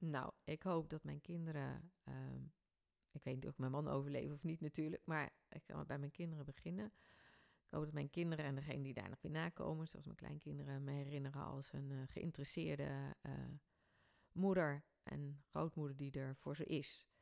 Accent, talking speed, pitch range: Dutch, 190 wpm, 140-170 Hz